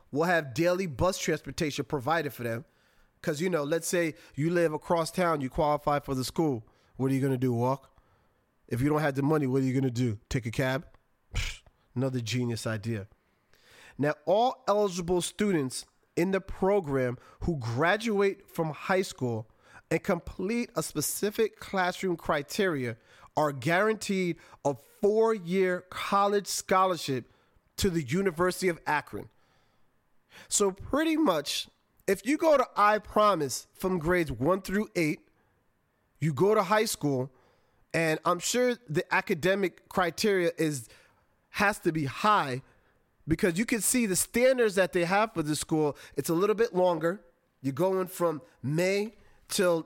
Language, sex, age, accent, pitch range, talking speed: English, male, 30-49, American, 135-195 Hz, 155 wpm